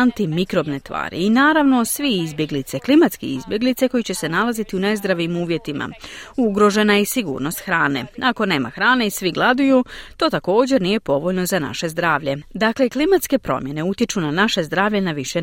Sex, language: female, Croatian